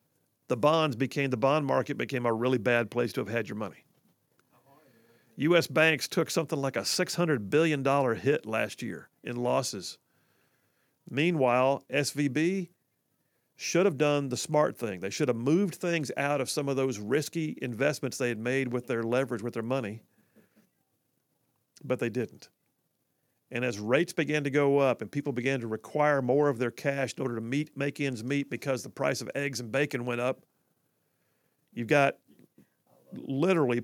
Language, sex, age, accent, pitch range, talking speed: English, male, 50-69, American, 125-155 Hz, 170 wpm